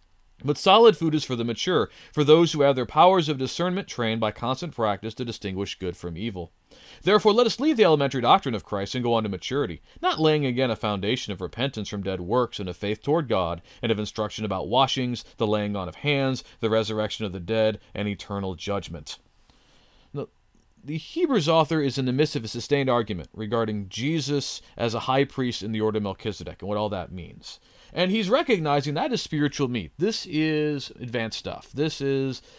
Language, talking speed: English, 205 wpm